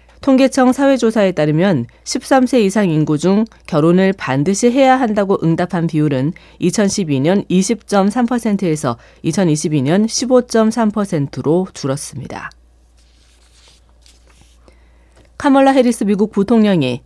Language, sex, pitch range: Korean, female, 145-215 Hz